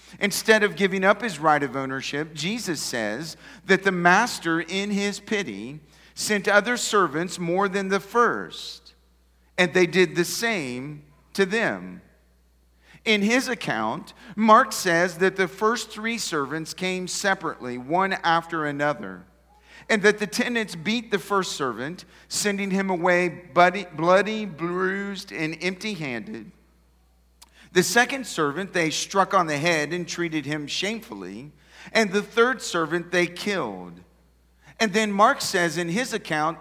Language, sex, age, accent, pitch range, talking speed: English, male, 40-59, American, 145-205 Hz, 140 wpm